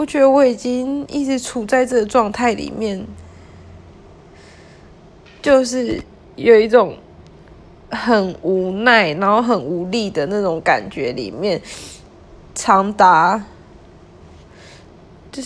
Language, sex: Chinese, female